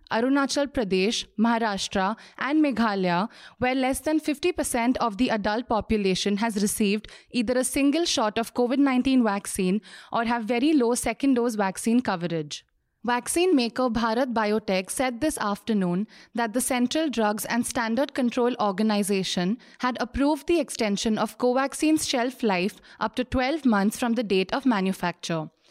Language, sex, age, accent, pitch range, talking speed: English, female, 30-49, Indian, 210-255 Hz, 140 wpm